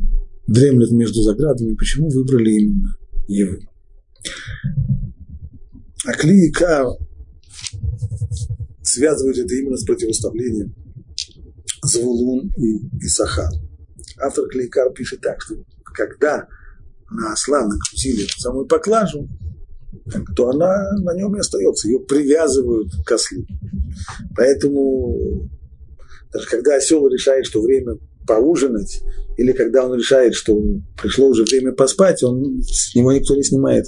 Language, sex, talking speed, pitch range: Russian, male, 110 wpm, 105-140 Hz